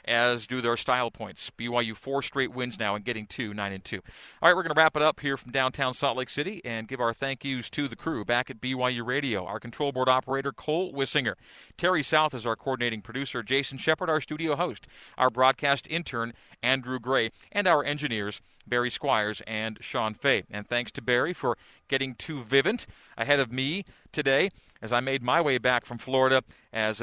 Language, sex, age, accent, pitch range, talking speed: English, male, 40-59, American, 115-135 Hz, 205 wpm